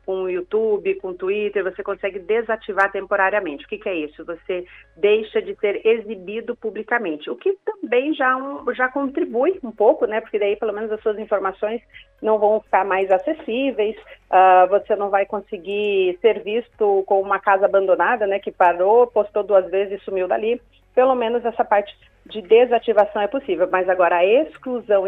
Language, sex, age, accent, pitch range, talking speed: Portuguese, female, 40-59, Brazilian, 195-235 Hz, 175 wpm